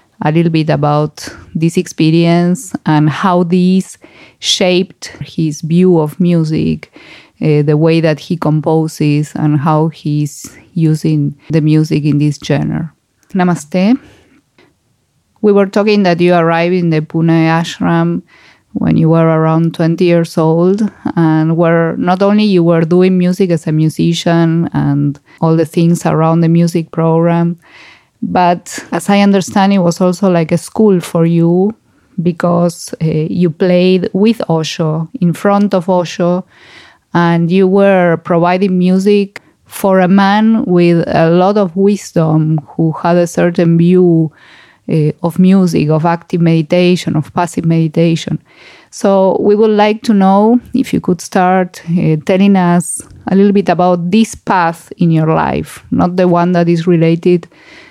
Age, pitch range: 20-39, 160-185 Hz